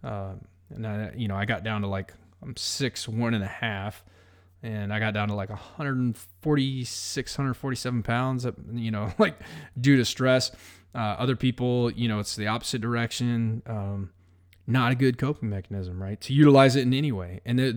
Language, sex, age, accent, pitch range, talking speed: English, male, 20-39, American, 100-125 Hz, 195 wpm